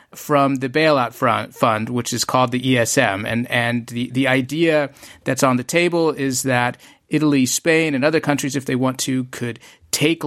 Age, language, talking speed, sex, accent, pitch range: 30-49, English, 185 wpm, male, American, 120-140 Hz